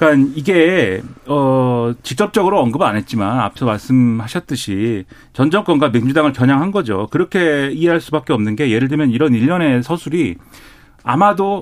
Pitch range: 125-165 Hz